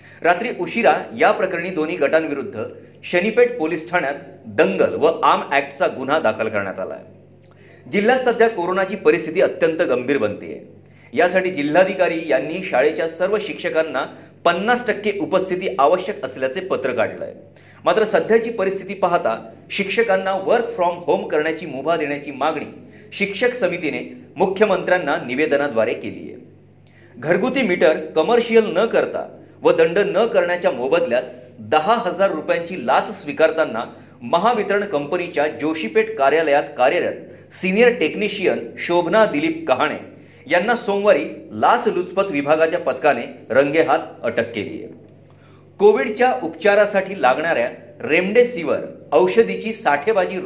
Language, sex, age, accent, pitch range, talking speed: Marathi, male, 40-59, native, 160-225 Hz, 85 wpm